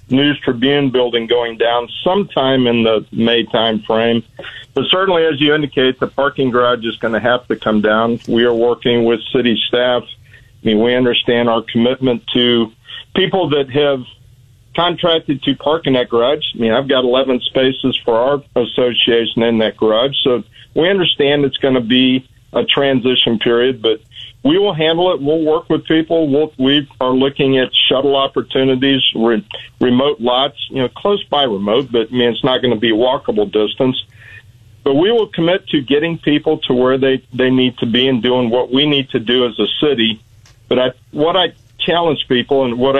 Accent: American